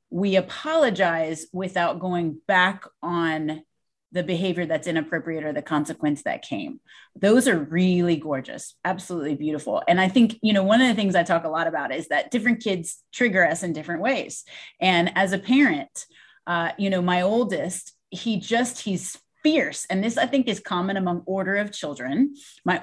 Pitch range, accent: 180-255 Hz, American